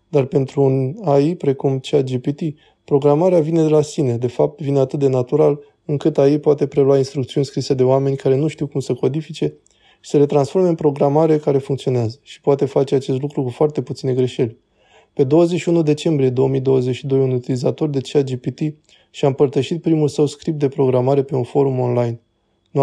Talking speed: 180 wpm